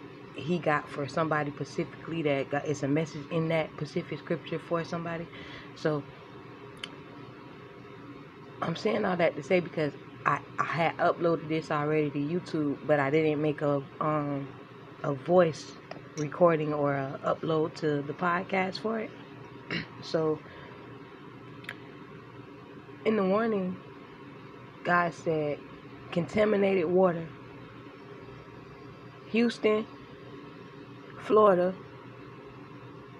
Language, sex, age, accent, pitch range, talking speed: English, female, 20-39, American, 135-165 Hz, 105 wpm